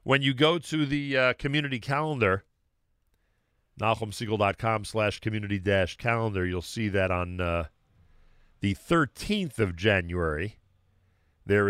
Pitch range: 95-115 Hz